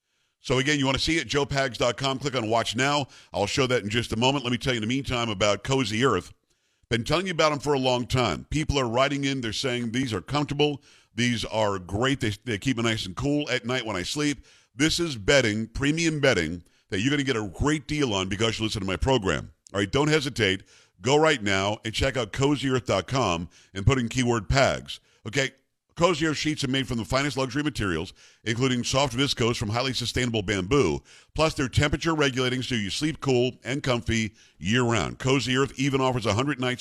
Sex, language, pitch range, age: male, English, 110-140 Hz, 50-69